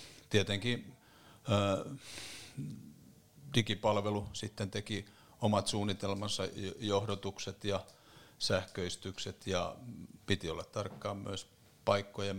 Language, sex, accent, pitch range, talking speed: Finnish, male, native, 95-105 Hz, 75 wpm